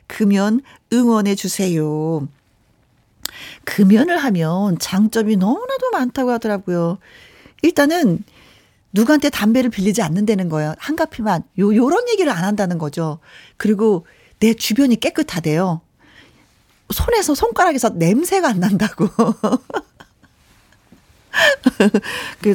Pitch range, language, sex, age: 180-275 Hz, Korean, female, 40-59